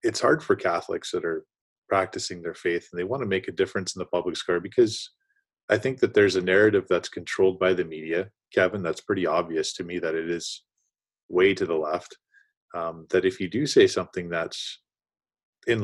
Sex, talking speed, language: male, 205 wpm, English